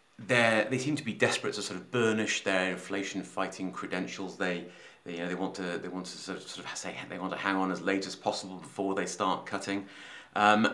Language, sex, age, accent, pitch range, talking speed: English, male, 30-49, British, 90-105 Hz, 230 wpm